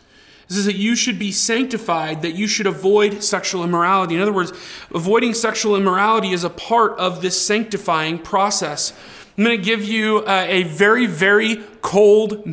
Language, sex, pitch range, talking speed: English, male, 180-215 Hz, 170 wpm